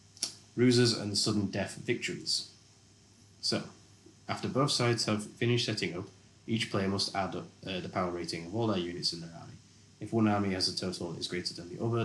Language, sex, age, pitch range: English, male, 20-39, 90-110 Hz